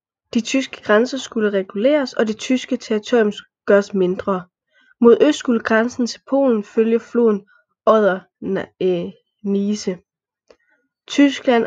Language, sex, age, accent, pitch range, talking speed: Danish, female, 20-39, native, 205-245 Hz, 115 wpm